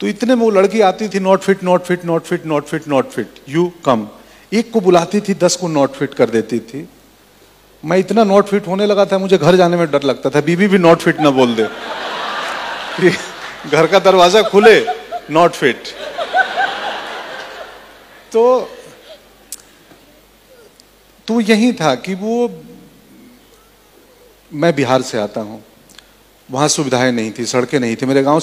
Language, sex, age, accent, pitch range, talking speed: Hindi, male, 40-59, native, 135-195 Hz, 165 wpm